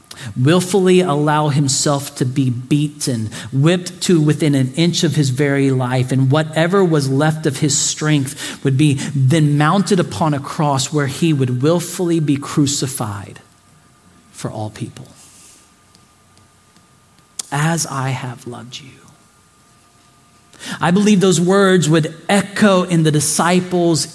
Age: 40-59